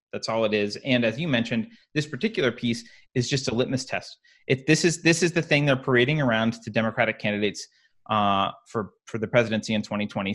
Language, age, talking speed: English, 30-49, 210 wpm